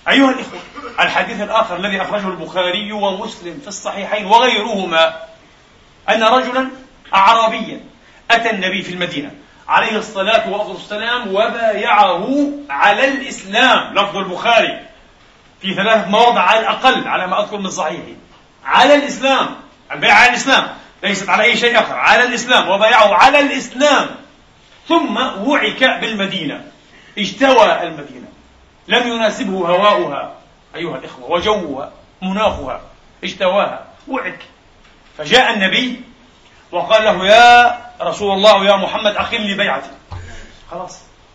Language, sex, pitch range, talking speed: Arabic, male, 190-255 Hz, 110 wpm